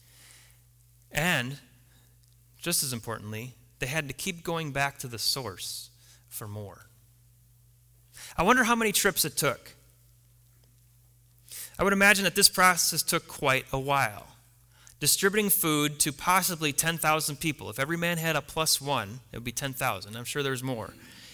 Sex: male